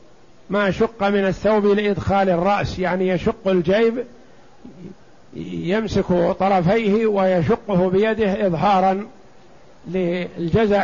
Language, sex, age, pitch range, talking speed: Arabic, male, 50-69, 180-210 Hz, 85 wpm